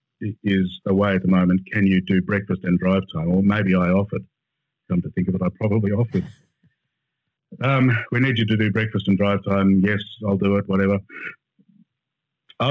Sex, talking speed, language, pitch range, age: male, 195 wpm, English, 95-130 Hz, 50-69